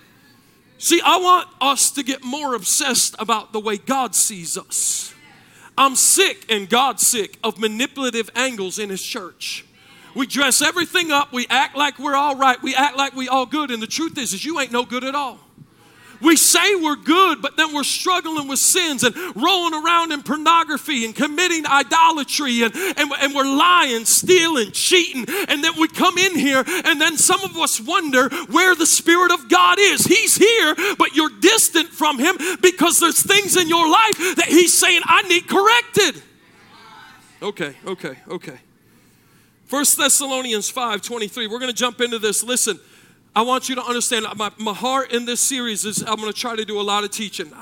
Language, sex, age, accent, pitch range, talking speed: English, male, 40-59, American, 205-315 Hz, 190 wpm